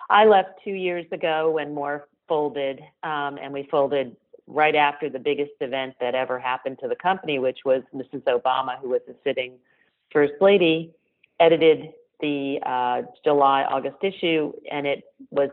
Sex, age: female, 40-59